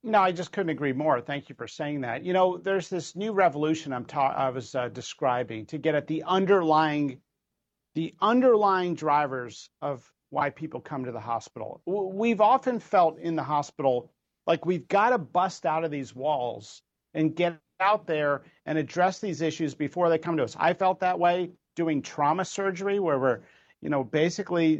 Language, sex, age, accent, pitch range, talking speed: English, male, 50-69, American, 140-180 Hz, 190 wpm